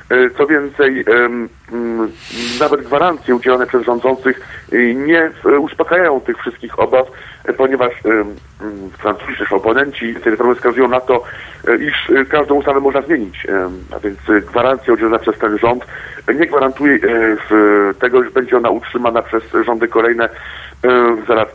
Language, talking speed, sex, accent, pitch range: Polish, 120 wpm, male, native, 120-155 Hz